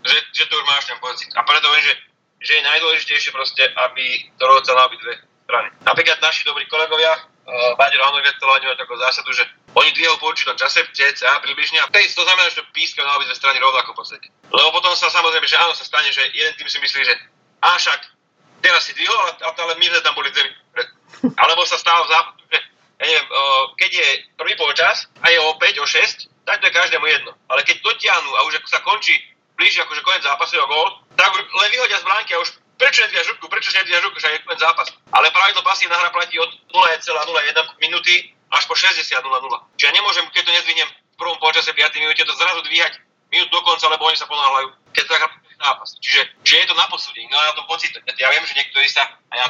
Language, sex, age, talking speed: Slovak, male, 30-49, 230 wpm